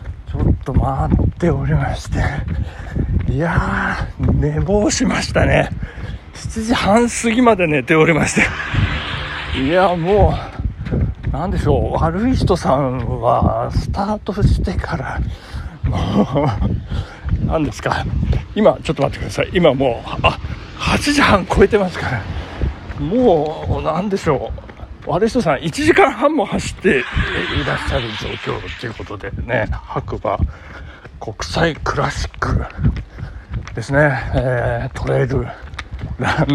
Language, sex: Japanese, male